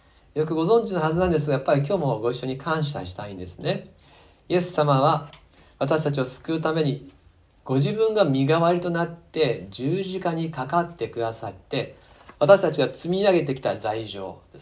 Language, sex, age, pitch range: Japanese, male, 40-59, 90-155 Hz